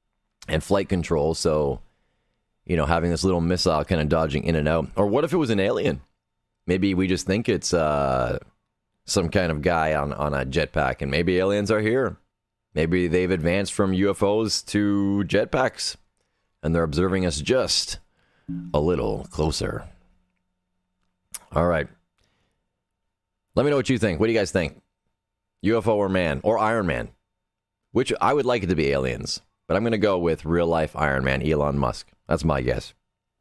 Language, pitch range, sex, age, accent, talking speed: English, 85-105 Hz, male, 30-49, American, 175 wpm